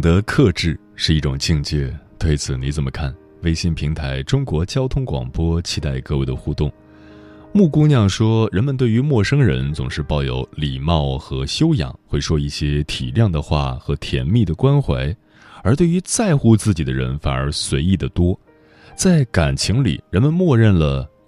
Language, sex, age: Chinese, male, 20-39